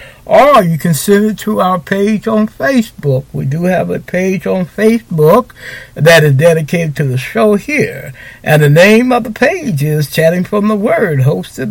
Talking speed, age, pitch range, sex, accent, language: 185 wpm, 60-79, 150-220 Hz, male, American, English